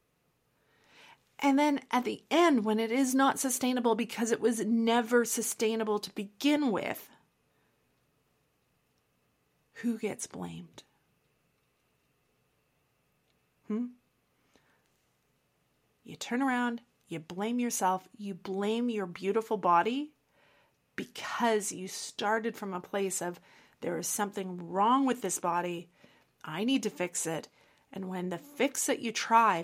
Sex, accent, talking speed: female, American, 120 wpm